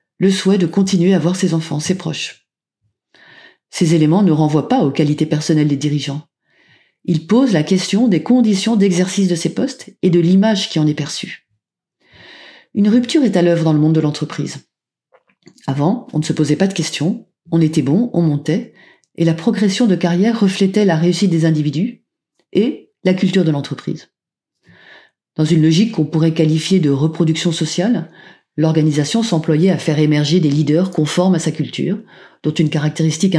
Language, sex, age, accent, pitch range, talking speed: French, female, 40-59, French, 150-190 Hz, 175 wpm